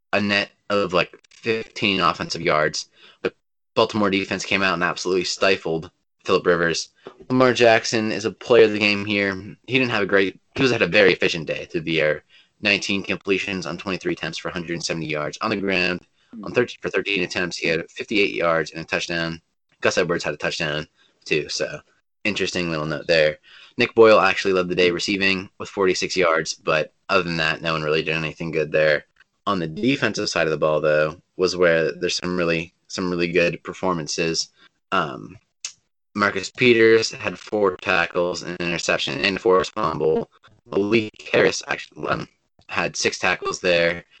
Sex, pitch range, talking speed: male, 85-100 Hz, 180 wpm